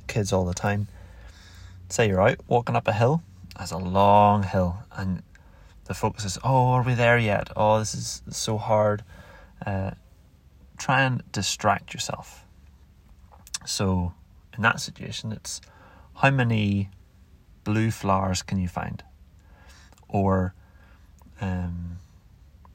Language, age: English, 30-49